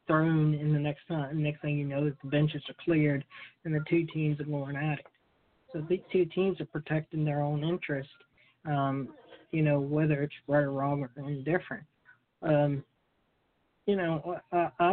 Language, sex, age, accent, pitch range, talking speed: English, male, 40-59, American, 145-165 Hz, 175 wpm